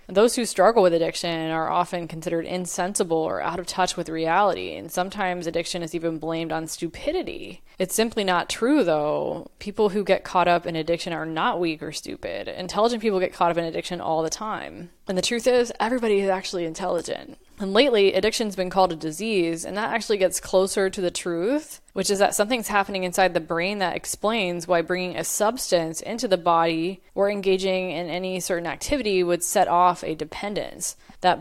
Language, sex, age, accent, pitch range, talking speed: English, female, 10-29, American, 170-200 Hz, 195 wpm